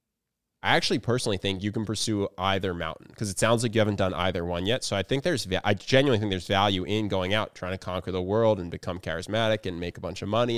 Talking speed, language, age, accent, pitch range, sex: 255 wpm, English, 20-39, American, 95-115 Hz, male